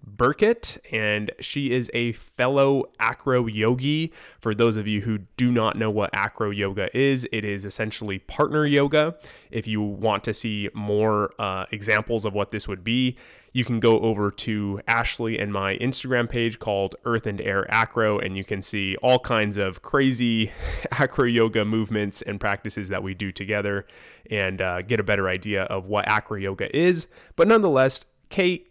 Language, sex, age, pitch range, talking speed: English, male, 20-39, 105-125 Hz, 175 wpm